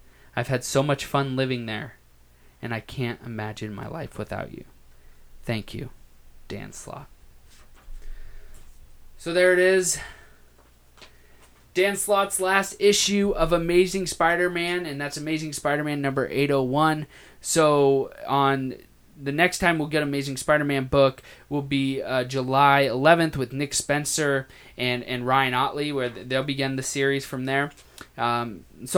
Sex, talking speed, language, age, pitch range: male, 140 wpm, English, 20-39, 125-155 Hz